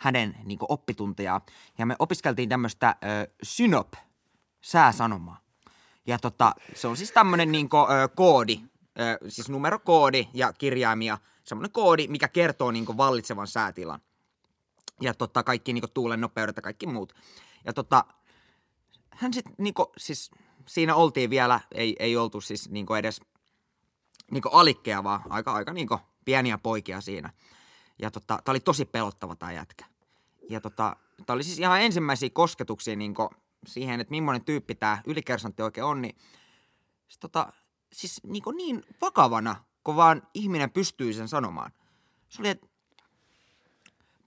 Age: 20-39